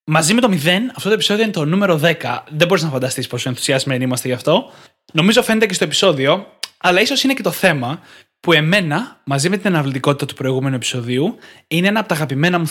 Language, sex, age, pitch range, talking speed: Greek, male, 20-39, 135-190 Hz, 215 wpm